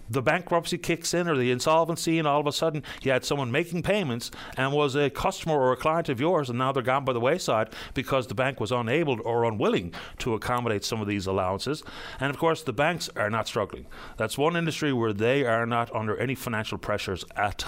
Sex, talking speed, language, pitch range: male, 225 wpm, English, 110-165 Hz